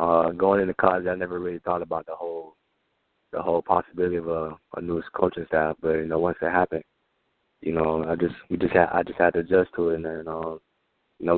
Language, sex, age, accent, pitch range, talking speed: English, male, 20-39, American, 85-90 Hz, 235 wpm